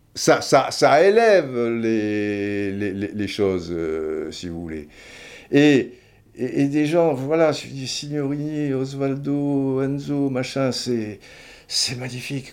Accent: French